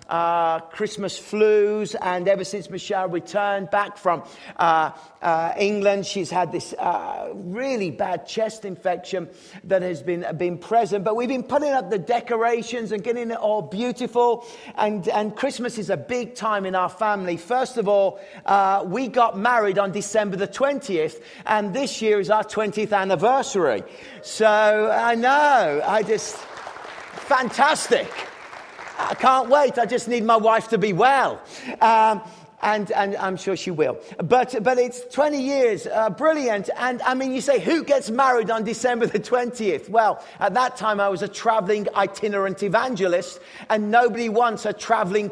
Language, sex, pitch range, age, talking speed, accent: English, male, 195-245 Hz, 40-59, 165 wpm, British